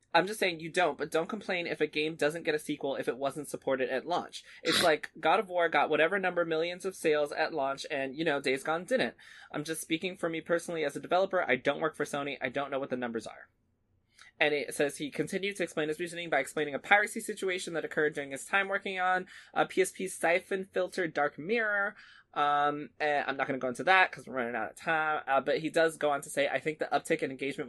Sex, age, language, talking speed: male, 20-39, English, 255 wpm